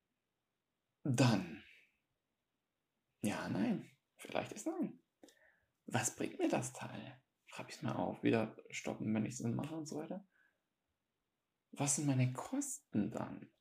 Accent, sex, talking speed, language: German, male, 130 wpm, German